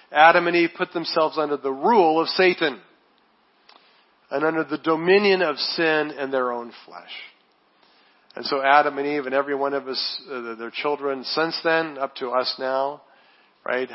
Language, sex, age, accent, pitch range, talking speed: English, male, 40-59, American, 125-160 Hz, 170 wpm